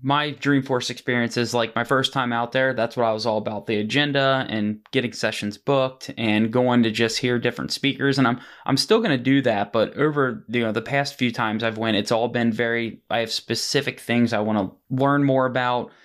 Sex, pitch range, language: male, 115-130 Hz, English